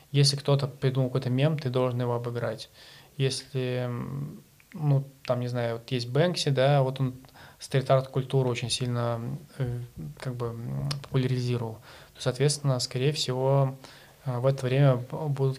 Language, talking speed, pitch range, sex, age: Russian, 135 wpm, 125-140 Hz, male, 20-39